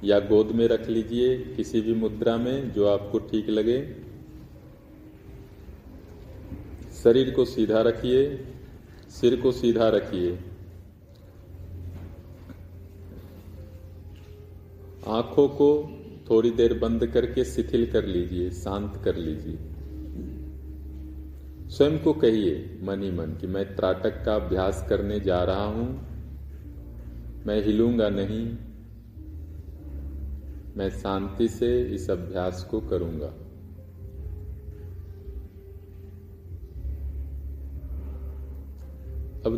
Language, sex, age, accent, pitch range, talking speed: Hindi, male, 40-59, native, 85-110 Hz, 90 wpm